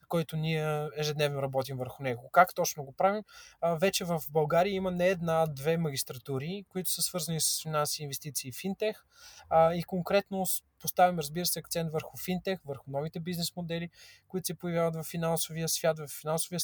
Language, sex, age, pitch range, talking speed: Bulgarian, male, 20-39, 150-180 Hz, 165 wpm